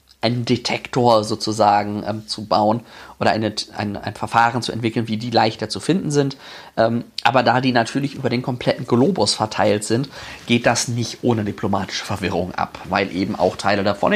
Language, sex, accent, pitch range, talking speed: German, male, German, 110-135 Hz, 175 wpm